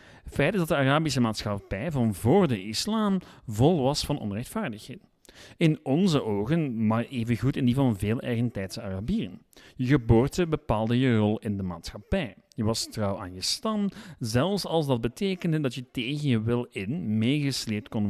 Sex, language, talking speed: male, Dutch, 170 wpm